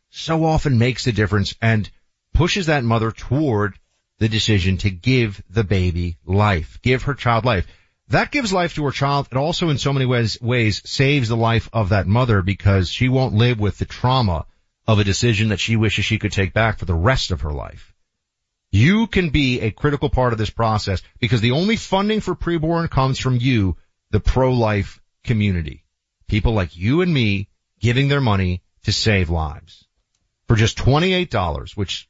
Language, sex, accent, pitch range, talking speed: English, male, American, 95-130 Hz, 185 wpm